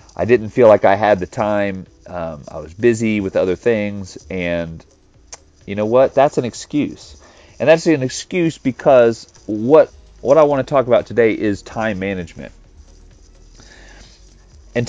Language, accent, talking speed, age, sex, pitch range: English, American, 155 wpm, 30-49, male, 95-120 Hz